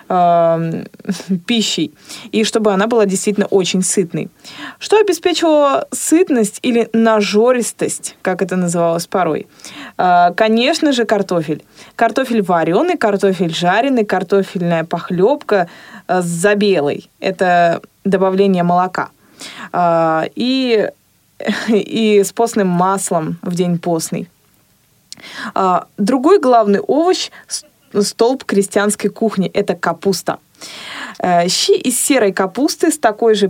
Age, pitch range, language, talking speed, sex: 20-39, 180-230 Hz, Russian, 95 wpm, female